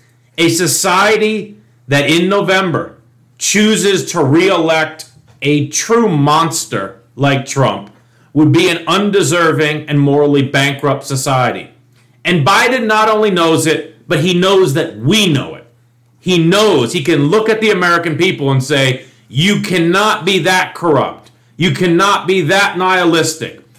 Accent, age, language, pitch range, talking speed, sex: American, 40-59, English, 130-180 Hz, 140 wpm, male